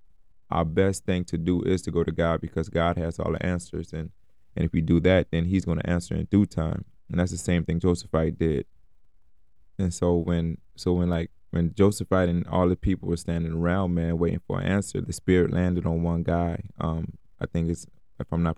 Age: 20-39